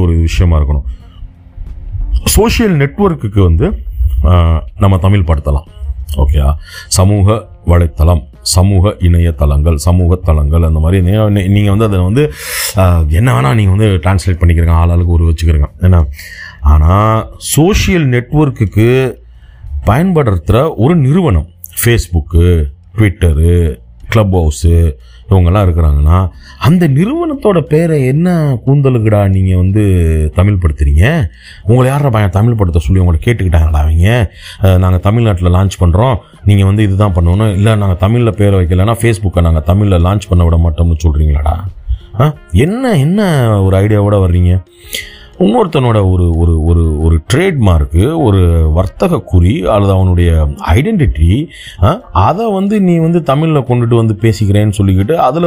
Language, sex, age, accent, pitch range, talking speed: Tamil, male, 30-49, native, 85-110 Hz, 80 wpm